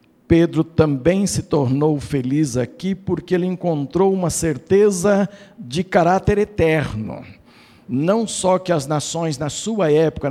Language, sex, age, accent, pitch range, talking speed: Portuguese, male, 60-79, Brazilian, 135-205 Hz, 130 wpm